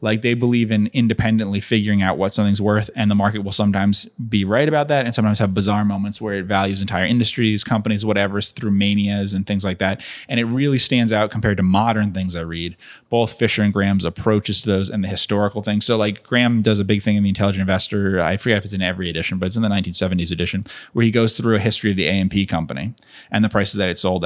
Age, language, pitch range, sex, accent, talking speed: 20-39, English, 100-115 Hz, male, American, 245 wpm